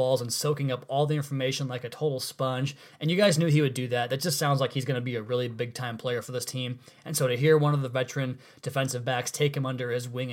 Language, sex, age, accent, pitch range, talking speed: English, male, 20-39, American, 130-155 Hz, 285 wpm